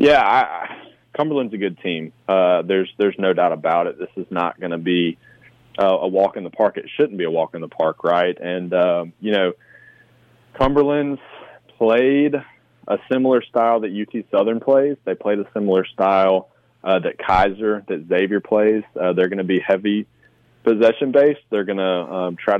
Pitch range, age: 95-115 Hz, 20-39